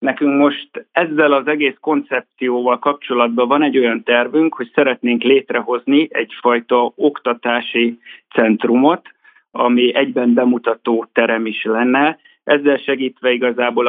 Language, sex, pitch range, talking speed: Hungarian, male, 120-140 Hz, 110 wpm